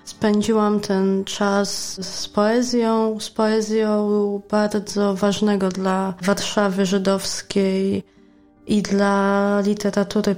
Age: 20-39